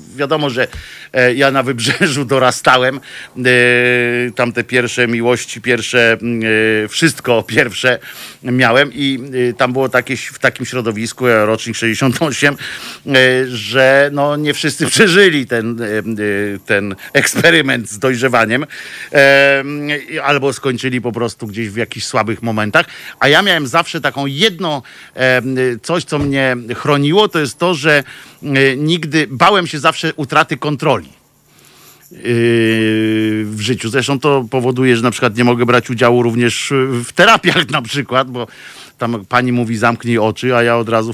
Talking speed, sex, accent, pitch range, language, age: 130 wpm, male, native, 115-145 Hz, Polish, 50-69